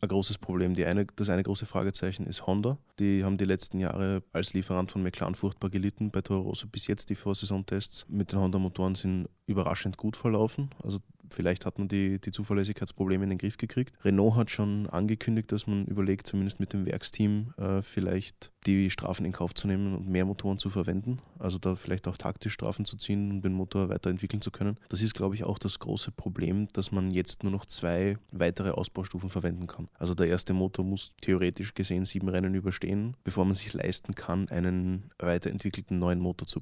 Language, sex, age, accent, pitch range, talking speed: German, male, 20-39, German, 90-100 Hz, 205 wpm